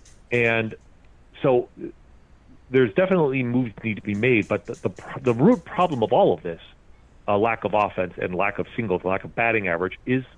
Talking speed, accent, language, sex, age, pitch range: 195 wpm, American, English, male, 40-59, 95-120 Hz